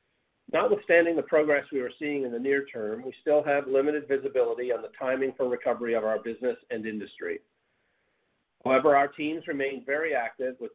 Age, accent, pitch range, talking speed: 50-69, American, 125-155 Hz, 180 wpm